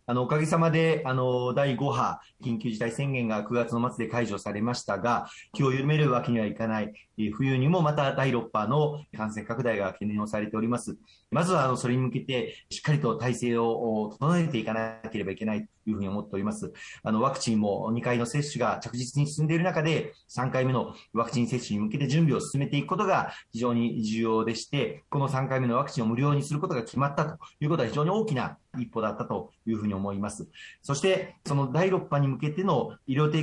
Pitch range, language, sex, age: 115-150 Hz, Japanese, male, 40-59